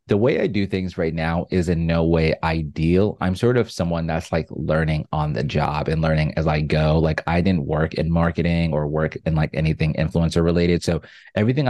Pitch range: 80-90 Hz